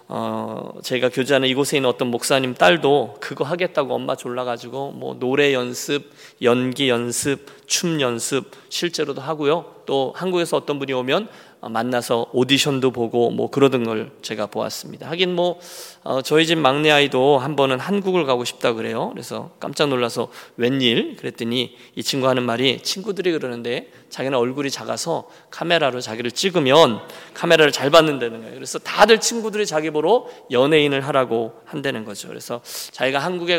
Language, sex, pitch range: Korean, male, 125-165 Hz